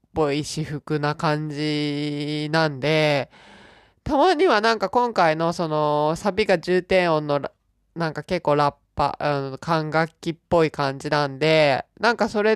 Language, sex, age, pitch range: Japanese, male, 20-39, 135-175 Hz